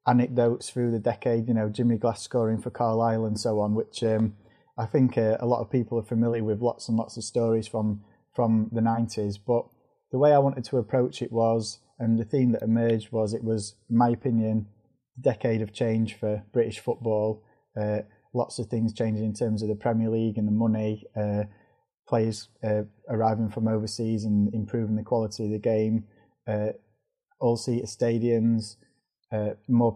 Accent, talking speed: British, 190 wpm